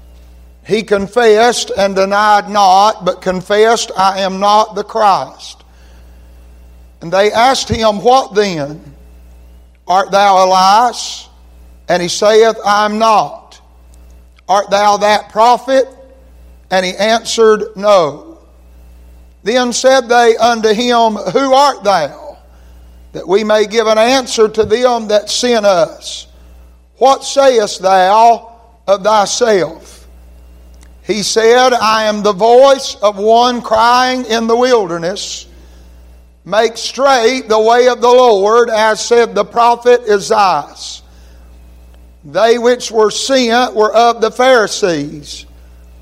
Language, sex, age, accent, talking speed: English, male, 60-79, American, 120 wpm